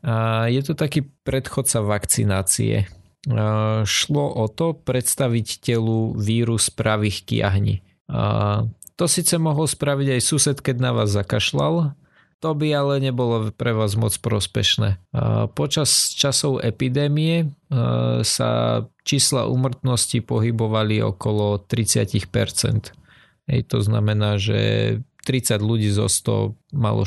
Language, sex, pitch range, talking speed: Slovak, male, 105-130 Hz, 115 wpm